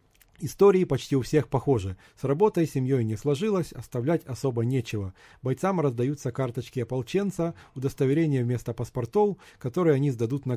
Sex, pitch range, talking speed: male, 130-170 Hz, 135 wpm